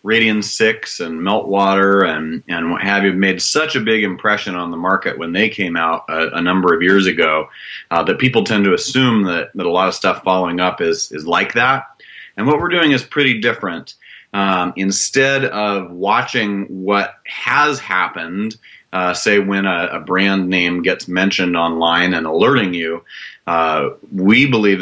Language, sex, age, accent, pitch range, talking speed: English, male, 30-49, American, 90-100 Hz, 180 wpm